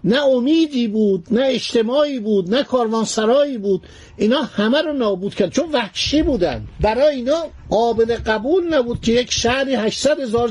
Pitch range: 205-260 Hz